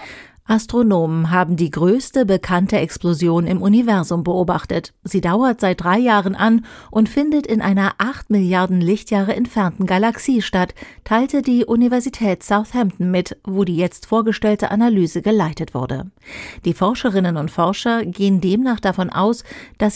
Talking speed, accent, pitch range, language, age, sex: 140 wpm, German, 180-225 Hz, German, 40-59, female